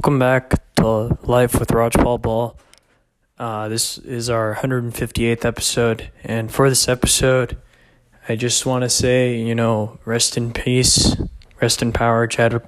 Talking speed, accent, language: 150 wpm, American, English